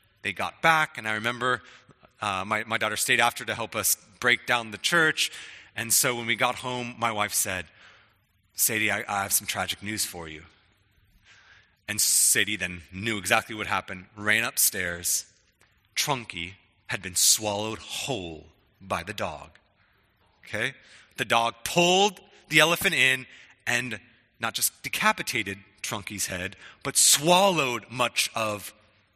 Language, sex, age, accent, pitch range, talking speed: English, male, 30-49, American, 100-140 Hz, 145 wpm